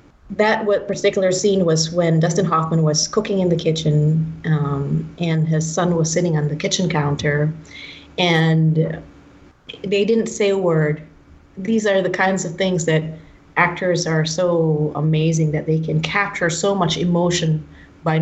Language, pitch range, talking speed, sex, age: English, 160-190 Hz, 155 wpm, female, 30-49